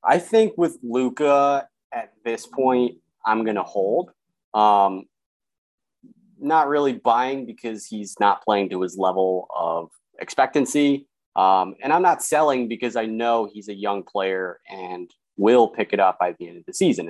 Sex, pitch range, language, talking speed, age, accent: male, 95-135 Hz, English, 165 wpm, 30-49, American